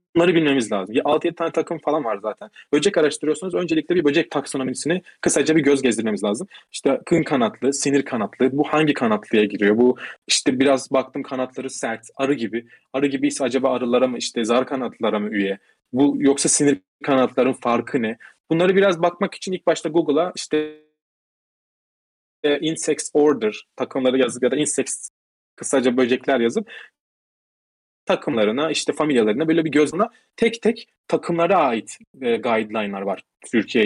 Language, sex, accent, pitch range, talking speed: Turkish, male, native, 125-165 Hz, 150 wpm